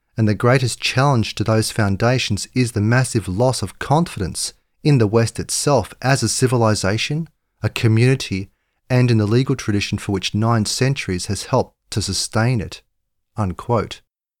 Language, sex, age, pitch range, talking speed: English, male, 40-59, 100-125 Hz, 155 wpm